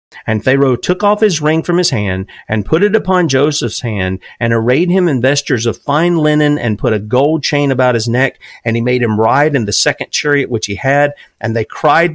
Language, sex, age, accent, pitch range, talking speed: English, male, 40-59, American, 115-150 Hz, 225 wpm